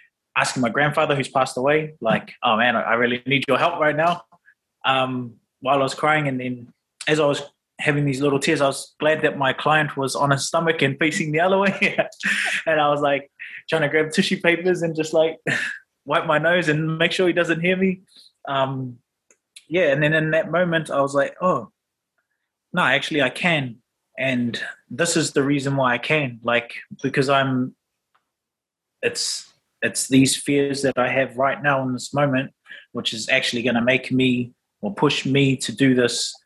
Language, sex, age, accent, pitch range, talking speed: English, male, 20-39, Australian, 130-155 Hz, 195 wpm